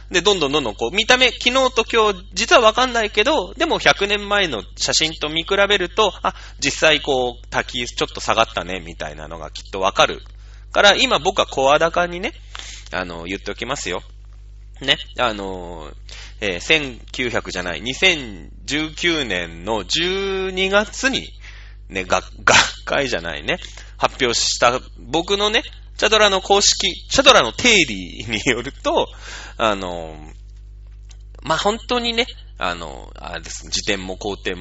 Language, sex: Japanese, male